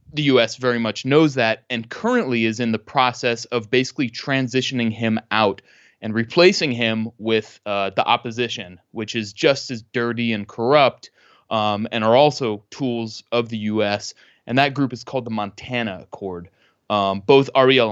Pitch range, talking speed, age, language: 110-130 Hz, 165 wpm, 20-39, English